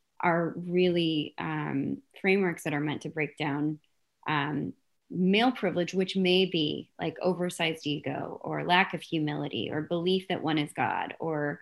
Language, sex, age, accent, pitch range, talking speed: English, female, 20-39, American, 145-175 Hz, 155 wpm